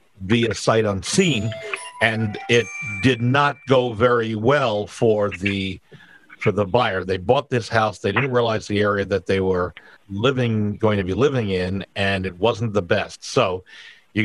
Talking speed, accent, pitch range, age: 175 wpm, American, 100-120 Hz, 50-69